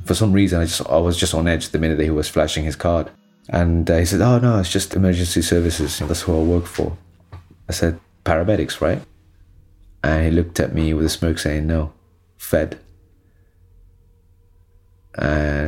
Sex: male